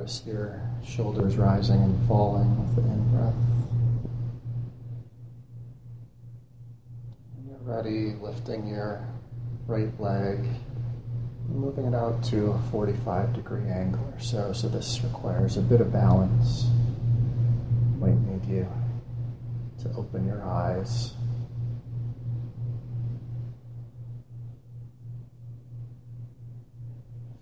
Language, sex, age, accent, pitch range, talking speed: English, male, 30-49, American, 115-120 Hz, 90 wpm